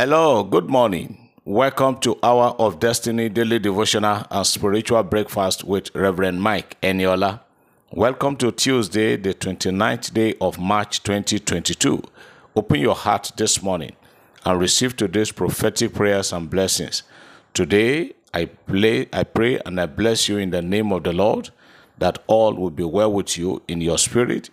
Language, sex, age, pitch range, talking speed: English, male, 50-69, 95-115 Hz, 150 wpm